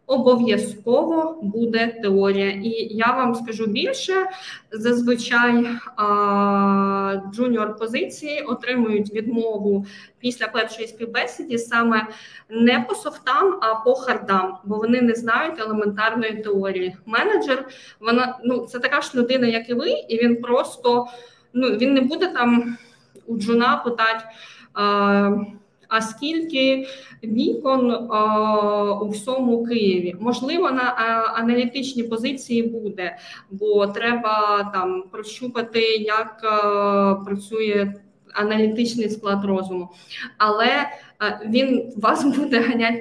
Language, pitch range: Ukrainian, 210-245 Hz